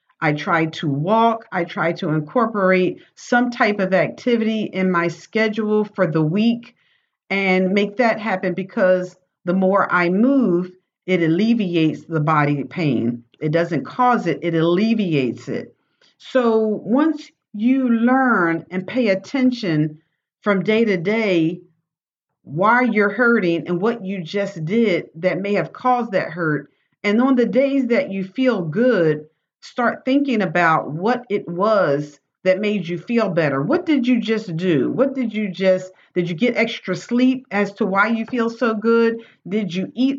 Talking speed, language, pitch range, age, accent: 160 wpm, English, 175-230 Hz, 50-69, American